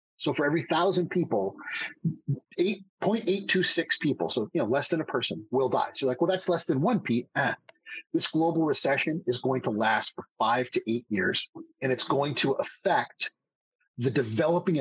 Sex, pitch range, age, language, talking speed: male, 125-180 Hz, 30-49, English, 200 wpm